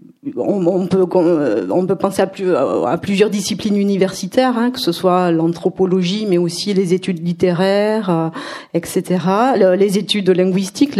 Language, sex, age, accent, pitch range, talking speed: French, female, 40-59, French, 180-215 Hz, 110 wpm